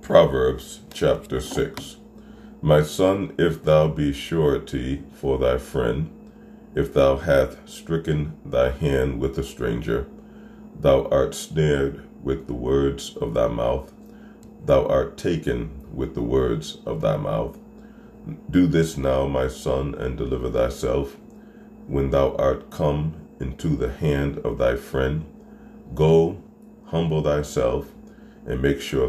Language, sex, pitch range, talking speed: English, male, 70-95 Hz, 130 wpm